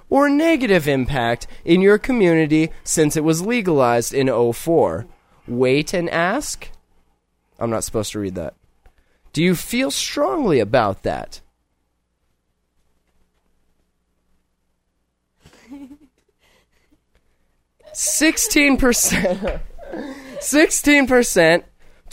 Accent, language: American, English